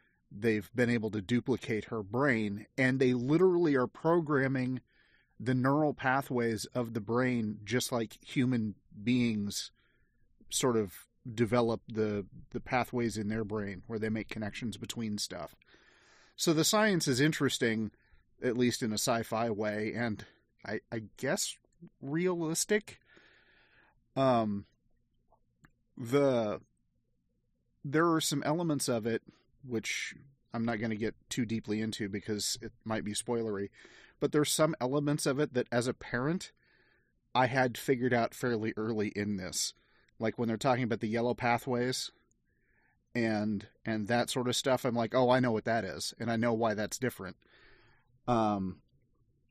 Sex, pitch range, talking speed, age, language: male, 110-130 Hz, 150 wpm, 30-49, English